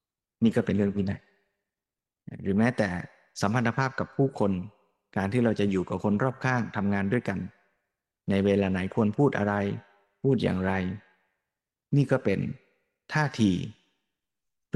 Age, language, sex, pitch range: 20-39, Thai, male, 100-130 Hz